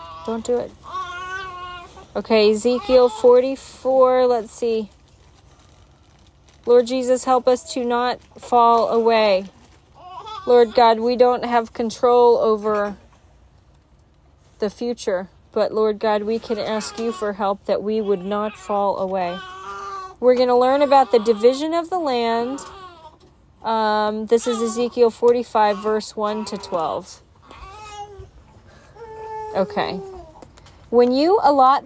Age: 30-49